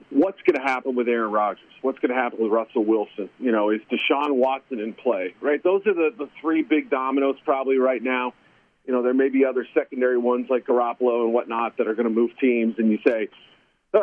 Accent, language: American, English